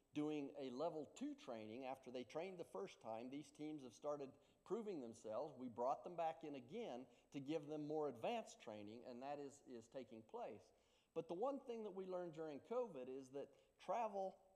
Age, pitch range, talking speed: 50-69, 130-190 Hz, 195 wpm